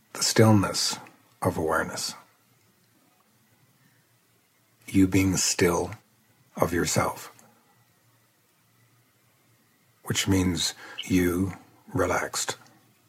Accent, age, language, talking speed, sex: American, 60-79, English, 60 wpm, male